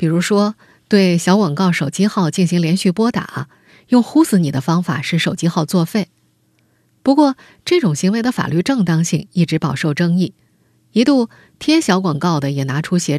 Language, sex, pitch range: Chinese, female, 160-210 Hz